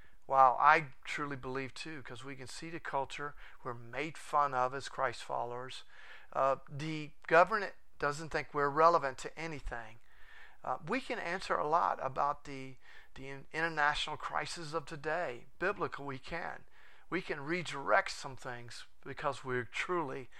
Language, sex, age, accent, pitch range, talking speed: English, male, 50-69, American, 130-160 Hz, 150 wpm